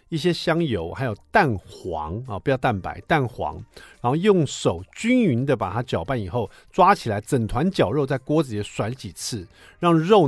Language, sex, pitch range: Chinese, male, 100-145 Hz